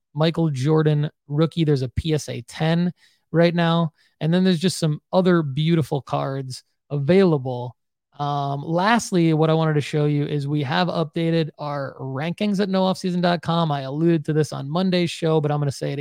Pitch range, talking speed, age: 145-170 Hz, 175 wpm, 20-39